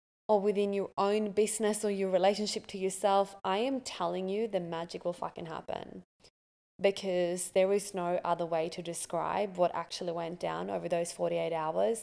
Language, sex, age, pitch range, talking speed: English, female, 20-39, 175-210 Hz, 175 wpm